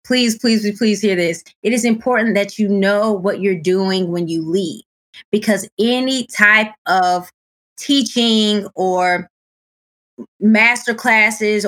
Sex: female